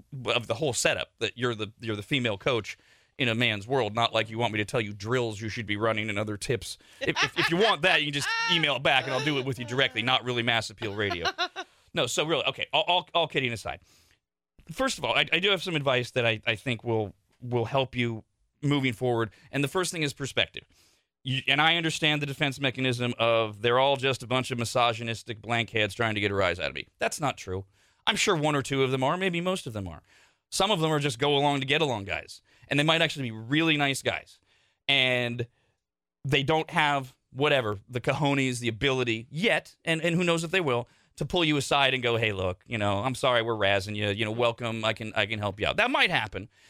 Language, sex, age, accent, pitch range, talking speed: English, male, 30-49, American, 115-150 Hz, 250 wpm